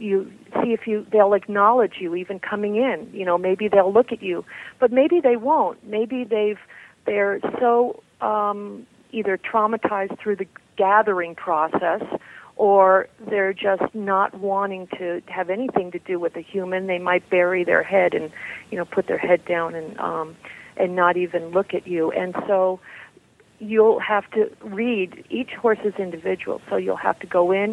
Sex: female